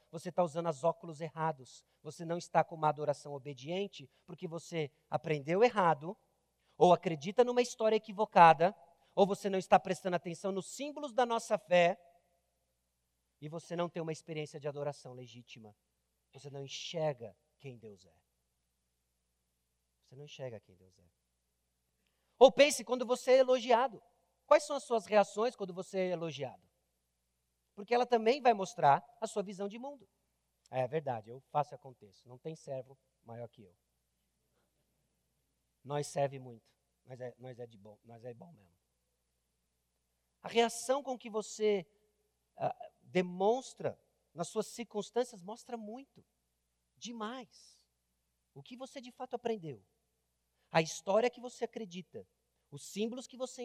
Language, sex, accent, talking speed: Portuguese, male, Brazilian, 140 wpm